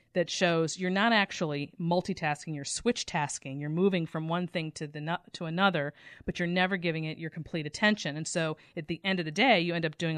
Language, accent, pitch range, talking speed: English, American, 155-185 Hz, 220 wpm